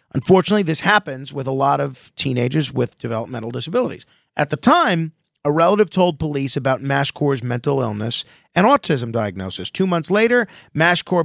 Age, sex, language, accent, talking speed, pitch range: 40-59, male, English, American, 155 wpm, 140-195 Hz